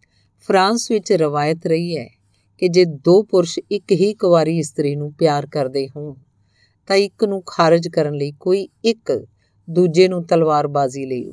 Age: 50-69